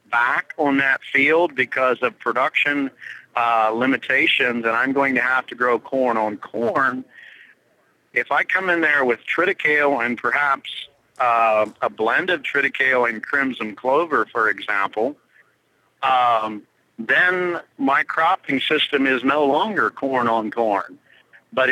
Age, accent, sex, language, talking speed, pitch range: 50-69, American, male, English, 140 wpm, 115-140 Hz